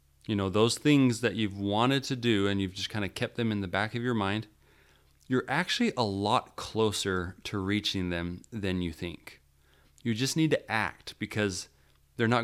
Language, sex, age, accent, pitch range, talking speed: English, male, 30-49, American, 90-115 Hz, 200 wpm